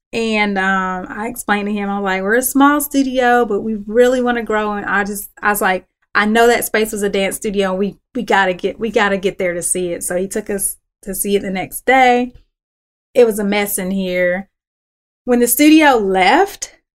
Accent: American